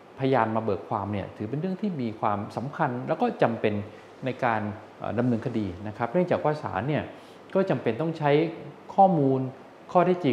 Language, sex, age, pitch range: Thai, male, 20-39, 110-150 Hz